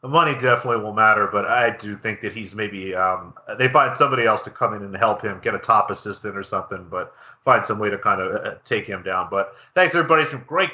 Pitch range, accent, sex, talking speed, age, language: 115-145 Hz, American, male, 255 wpm, 40-59, English